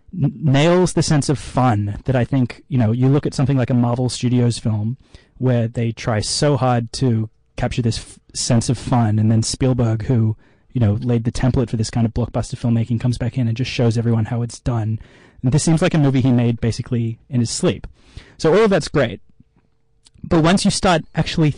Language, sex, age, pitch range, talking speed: English, male, 30-49, 115-135 Hz, 215 wpm